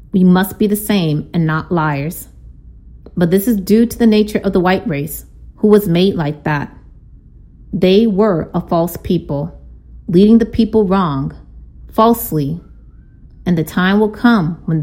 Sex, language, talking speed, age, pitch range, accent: female, English, 160 wpm, 30-49, 160-210 Hz, American